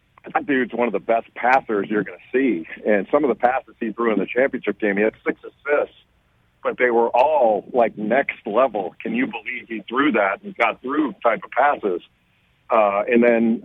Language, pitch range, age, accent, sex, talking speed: English, 110-130 Hz, 50-69, American, male, 210 wpm